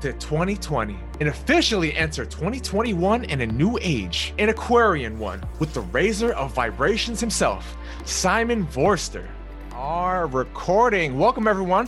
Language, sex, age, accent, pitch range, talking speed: English, male, 30-49, American, 140-200 Hz, 125 wpm